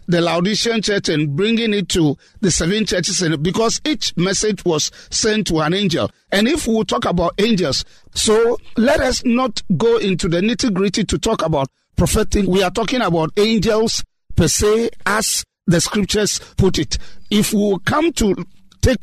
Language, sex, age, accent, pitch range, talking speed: English, male, 50-69, Nigerian, 175-225 Hz, 165 wpm